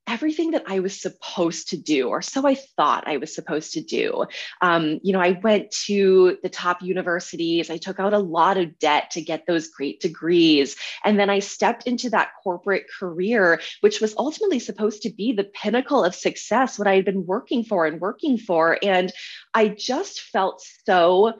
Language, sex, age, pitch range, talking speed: English, female, 20-39, 170-215 Hz, 195 wpm